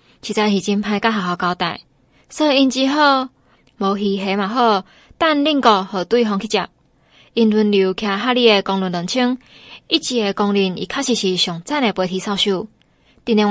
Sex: female